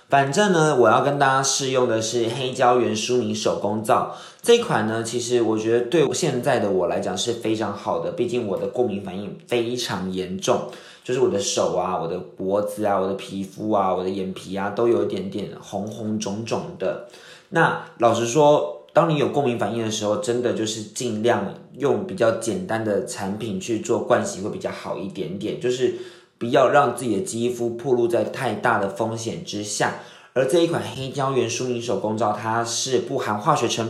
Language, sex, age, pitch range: Chinese, male, 20-39, 110-145 Hz